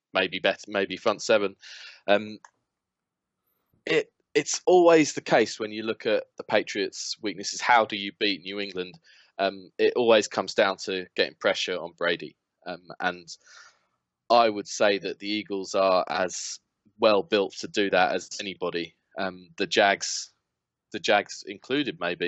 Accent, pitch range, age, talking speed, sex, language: British, 100-115 Hz, 20-39, 155 wpm, male, English